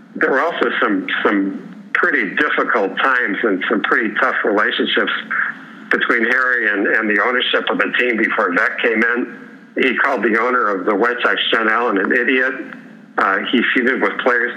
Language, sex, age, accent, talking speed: English, male, 60-79, American, 175 wpm